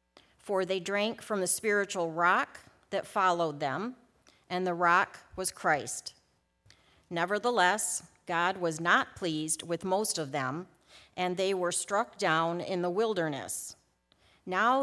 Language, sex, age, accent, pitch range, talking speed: English, female, 50-69, American, 170-220 Hz, 135 wpm